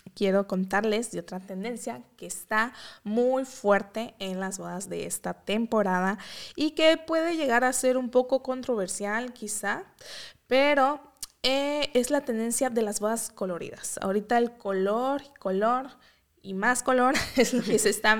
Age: 20-39